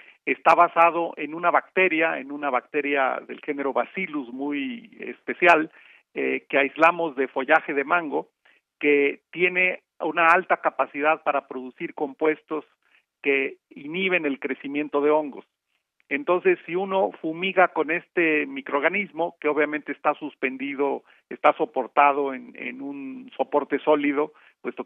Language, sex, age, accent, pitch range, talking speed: Spanish, male, 50-69, Mexican, 140-170 Hz, 130 wpm